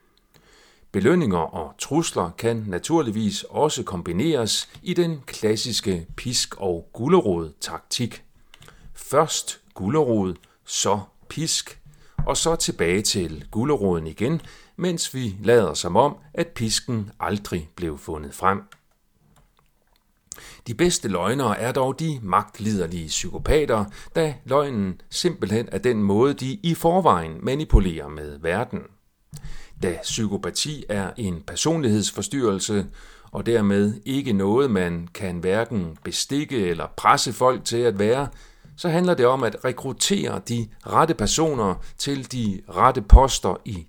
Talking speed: 120 wpm